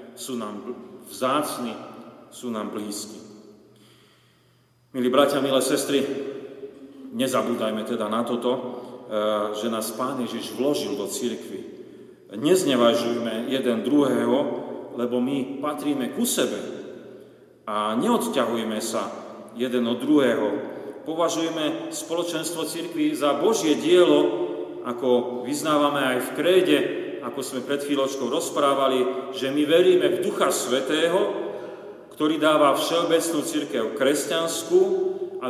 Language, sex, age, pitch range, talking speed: Slovak, male, 40-59, 120-150 Hz, 105 wpm